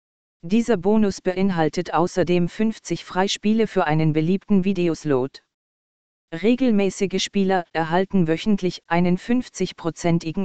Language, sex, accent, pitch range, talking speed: German, female, German, 170-195 Hz, 90 wpm